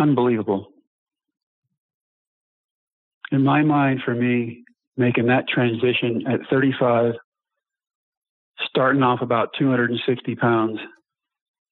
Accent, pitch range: American, 115-140 Hz